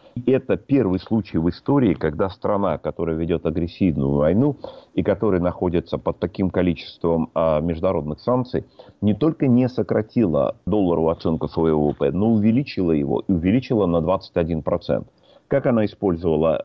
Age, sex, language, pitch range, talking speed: 40-59, male, Russian, 85-105 Hz, 135 wpm